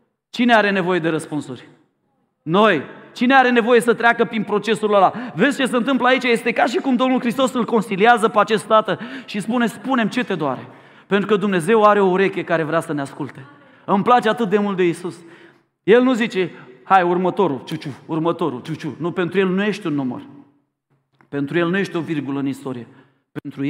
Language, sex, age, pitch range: Romanian, male, 30-49, 160-215 Hz